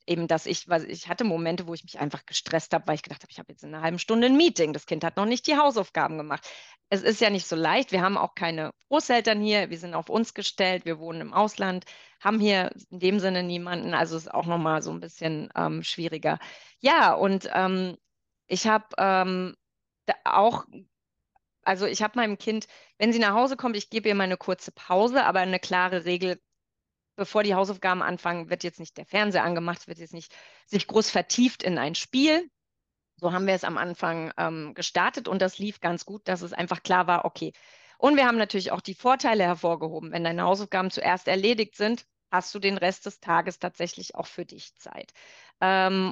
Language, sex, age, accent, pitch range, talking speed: German, female, 30-49, German, 170-210 Hz, 210 wpm